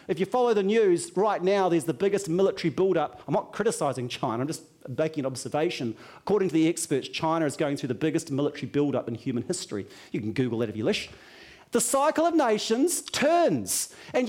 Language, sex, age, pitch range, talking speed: English, male, 40-59, 170-235 Hz, 205 wpm